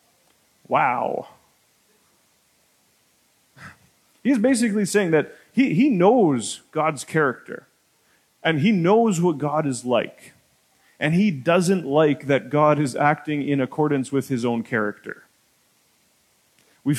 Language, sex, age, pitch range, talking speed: English, male, 30-49, 130-195 Hz, 115 wpm